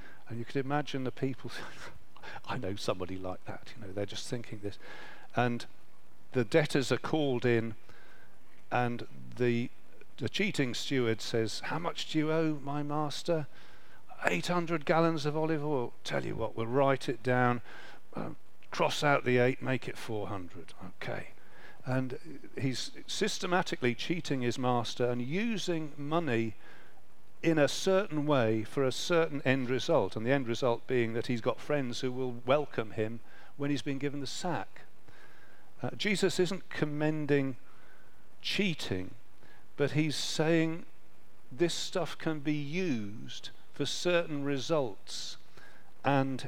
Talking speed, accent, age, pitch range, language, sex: 145 wpm, British, 50-69, 120-155 Hz, English, male